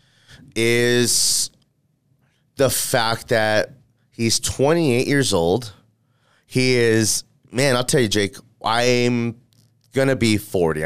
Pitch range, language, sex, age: 95-125 Hz, English, male, 30-49